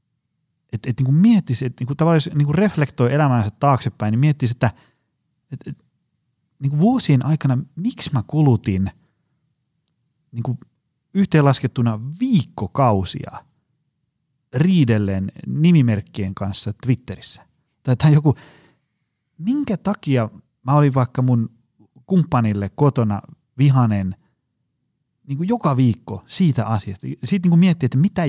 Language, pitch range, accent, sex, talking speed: Finnish, 115-155 Hz, native, male, 95 wpm